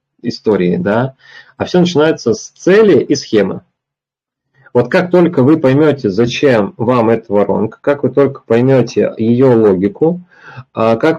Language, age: Russian, 30-49